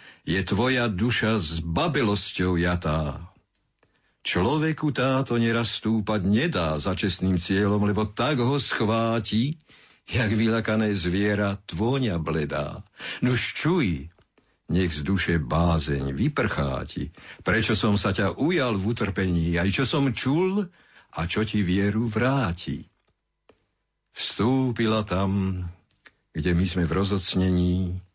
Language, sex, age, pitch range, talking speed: Slovak, male, 60-79, 90-115 Hz, 115 wpm